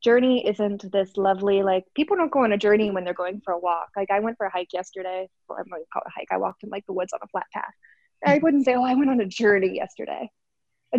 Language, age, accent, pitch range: English, 20-39, American, 200-260 Hz